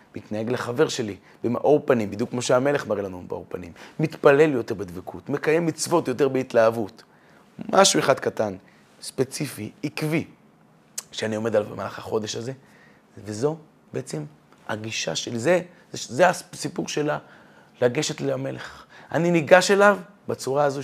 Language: Hebrew